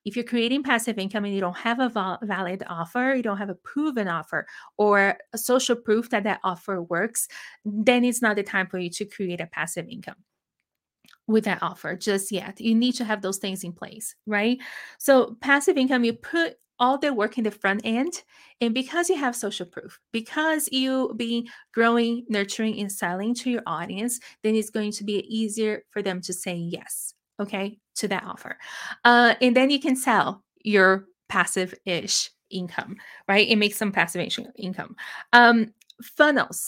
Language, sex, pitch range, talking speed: English, female, 195-240 Hz, 185 wpm